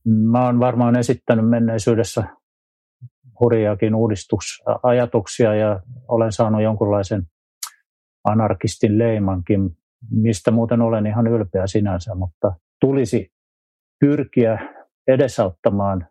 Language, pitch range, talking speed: Finnish, 95-115 Hz, 85 wpm